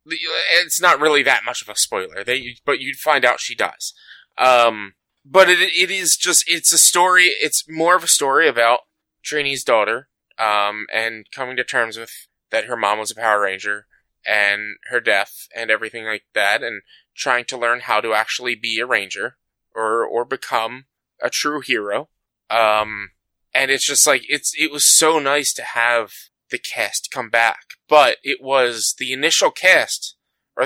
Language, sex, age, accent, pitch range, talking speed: English, male, 20-39, American, 110-150 Hz, 180 wpm